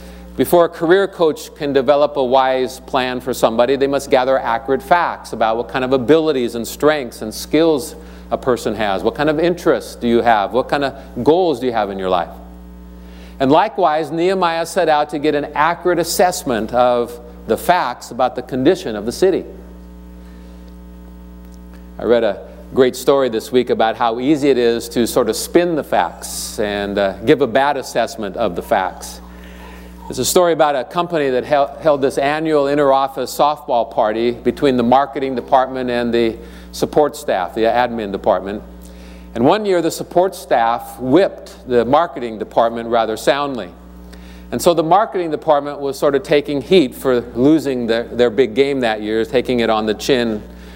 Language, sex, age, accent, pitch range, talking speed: English, male, 50-69, American, 95-145 Hz, 175 wpm